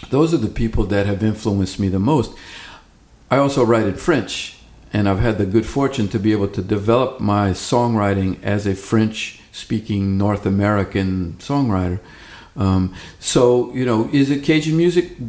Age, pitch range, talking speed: 50-69, 95-120 Hz, 165 wpm